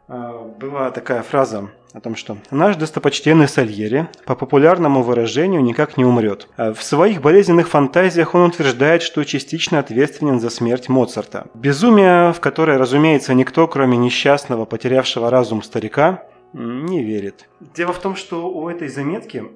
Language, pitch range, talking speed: Russian, 120-155 Hz, 140 wpm